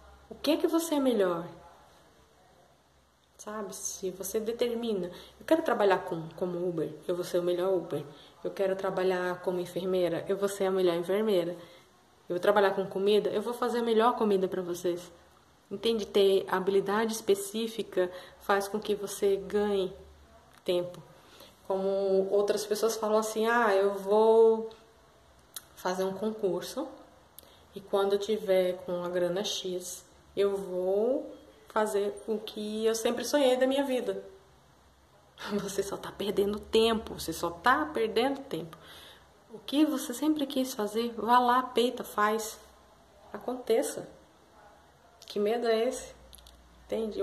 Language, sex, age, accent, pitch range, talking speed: Portuguese, female, 20-39, Brazilian, 180-220 Hz, 145 wpm